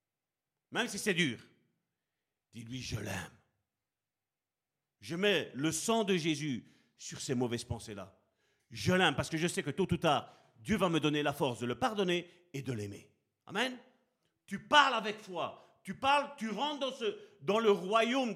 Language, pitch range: French, 160-225 Hz